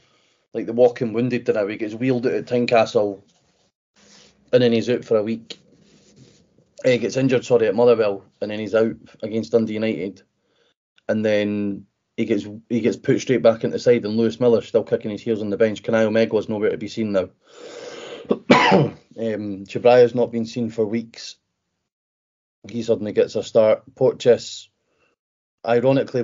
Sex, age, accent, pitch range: male, 30-49, British, 110-125 Hz